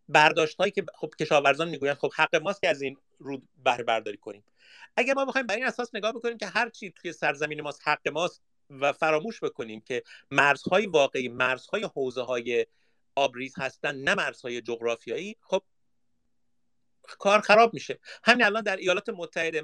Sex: male